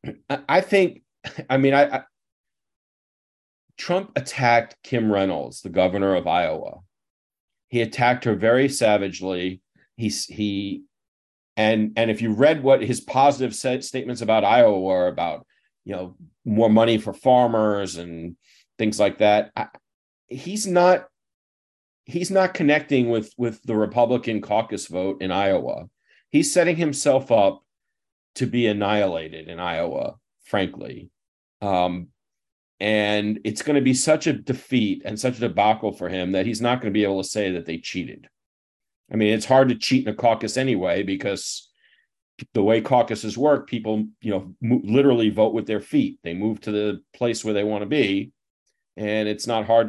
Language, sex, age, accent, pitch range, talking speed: English, male, 40-59, American, 100-130 Hz, 160 wpm